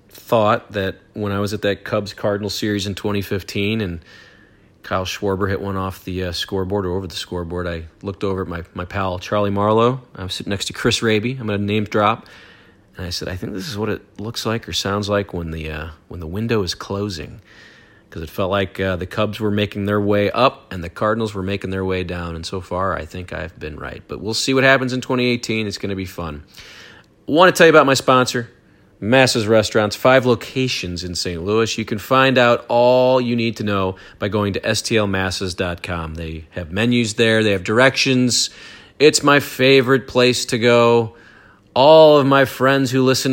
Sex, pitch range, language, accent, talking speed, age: male, 95-125 Hz, English, American, 210 wpm, 40-59